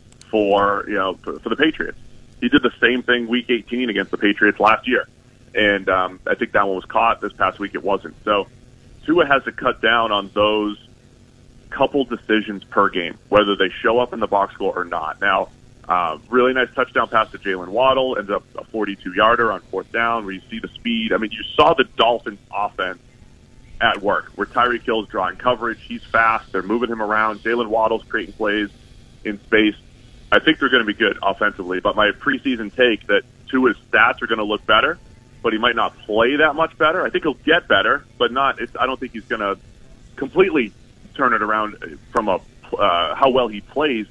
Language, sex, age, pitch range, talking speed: English, male, 30-49, 105-125 Hz, 210 wpm